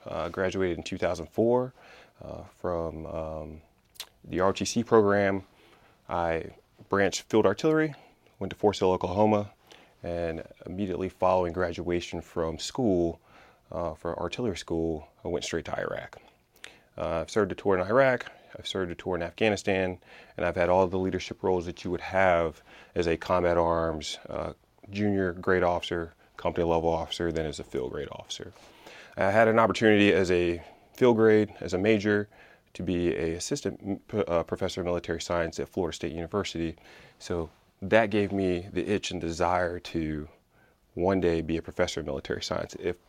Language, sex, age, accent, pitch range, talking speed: English, male, 30-49, American, 85-100 Hz, 165 wpm